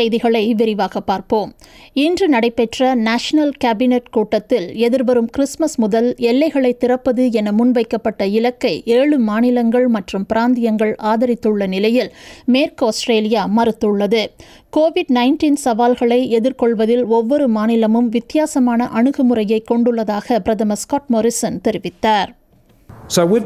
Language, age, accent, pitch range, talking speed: Tamil, 50-69, native, 175-250 Hz, 100 wpm